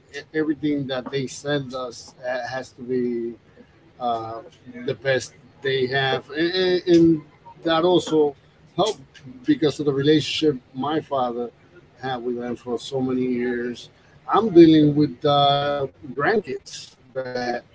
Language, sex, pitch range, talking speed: English, male, 125-155 Hz, 125 wpm